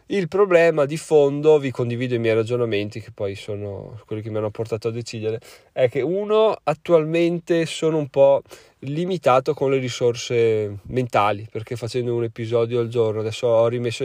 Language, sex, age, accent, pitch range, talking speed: Italian, male, 20-39, native, 115-140 Hz, 170 wpm